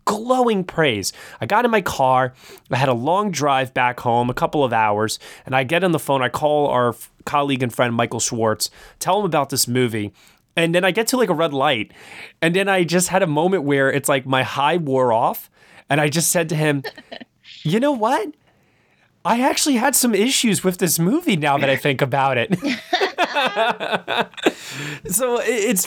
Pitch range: 125-185 Hz